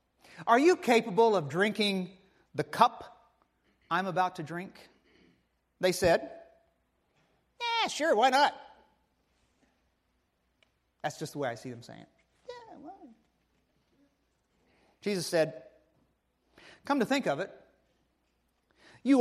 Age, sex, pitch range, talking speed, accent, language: 40-59, male, 185-280 Hz, 105 wpm, American, English